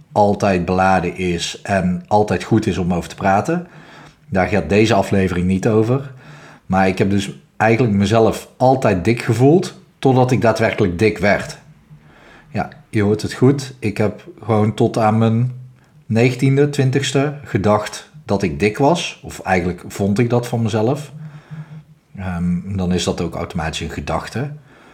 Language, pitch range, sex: Dutch, 95-125 Hz, male